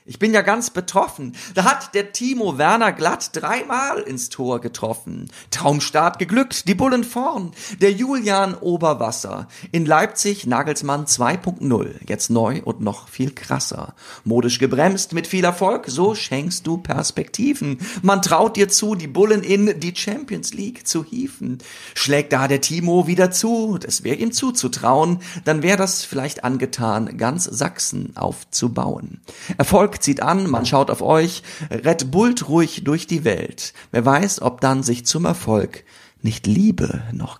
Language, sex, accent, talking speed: German, male, German, 150 wpm